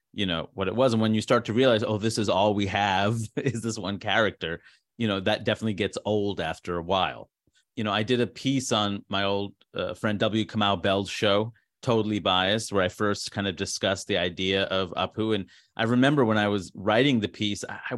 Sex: male